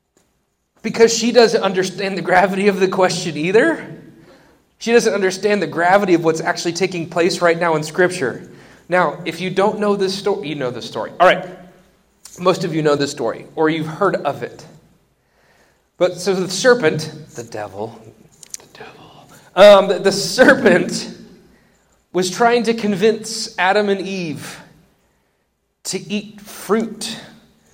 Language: English